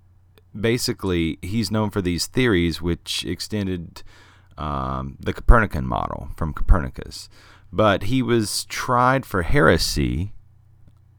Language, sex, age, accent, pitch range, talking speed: English, male, 30-49, American, 85-110 Hz, 115 wpm